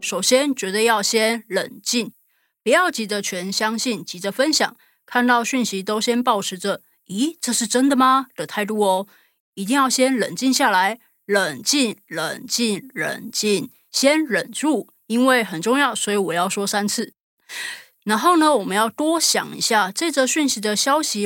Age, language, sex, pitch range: 20-39, Chinese, female, 200-260 Hz